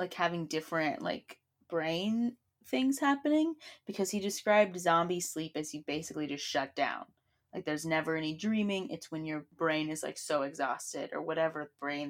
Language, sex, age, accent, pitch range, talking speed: English, female, 20-39, American, 155-195 Hz, 170 wpm